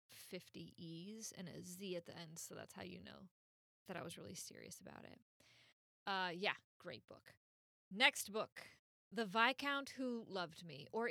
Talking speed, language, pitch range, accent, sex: 175 wpm, English, 185-260 Hz, American, female